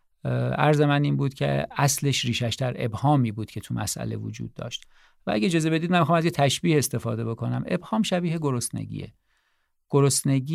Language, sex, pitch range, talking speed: Persian, male, 120-155 Hz, 170 wpm